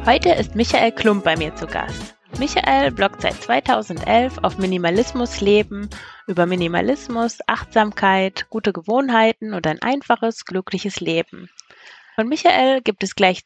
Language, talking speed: German, 135 wpm